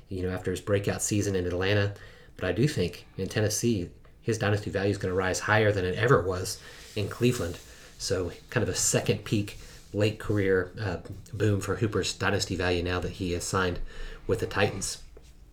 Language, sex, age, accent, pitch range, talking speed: English, male, 30-49, American, 100-125 Hz, 195 wpm